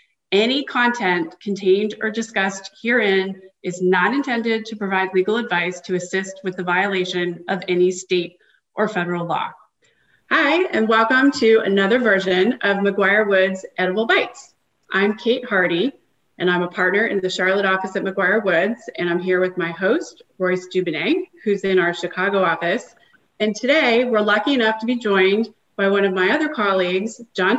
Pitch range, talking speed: 185-225 Hz, 165 wpm